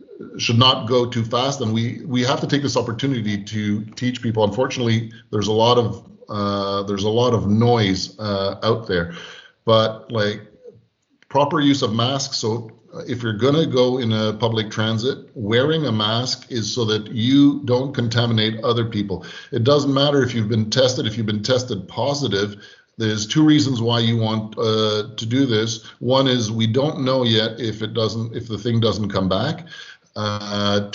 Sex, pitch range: male, 110-130 Hz